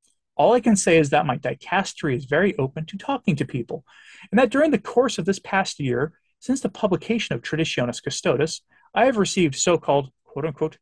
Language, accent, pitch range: English, American, 140-205 Hz